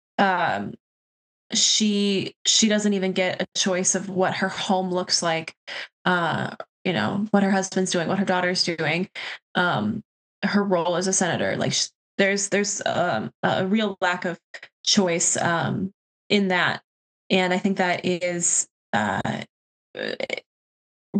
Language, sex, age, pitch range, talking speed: English, female, 20-39, 180-205 Hz, 140 wpm